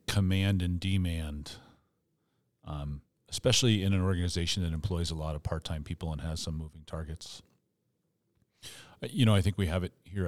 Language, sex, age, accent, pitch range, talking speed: English, male, 40-59, American, 85-100 Hz, 170 wpm